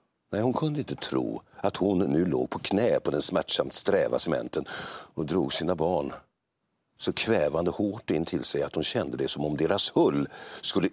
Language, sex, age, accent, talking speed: English, male, 60-79, Swedish, 190 wpm